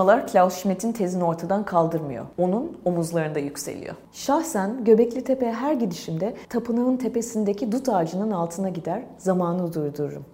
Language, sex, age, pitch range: Turkish, female, 30-49, 170-215 Hz